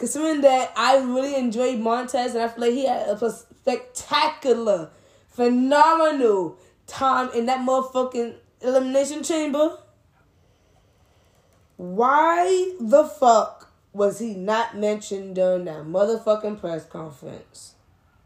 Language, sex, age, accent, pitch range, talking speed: English, female, 10-29, American, 180-255 Hz, 110 wpm